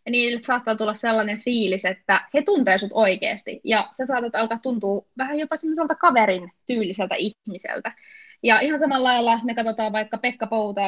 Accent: native